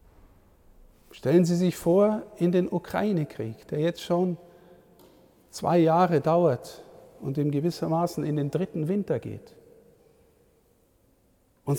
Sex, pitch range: male, 145-185 Hz